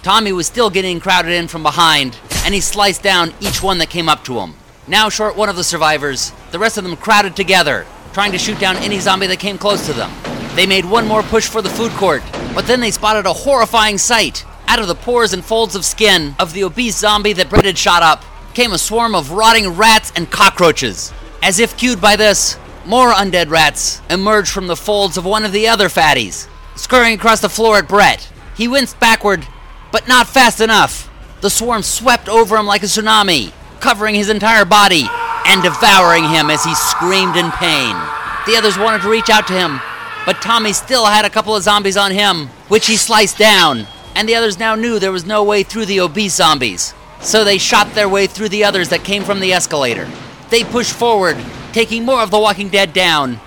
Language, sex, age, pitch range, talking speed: English, male, 30-49, 185-225 Hz, 215 wpm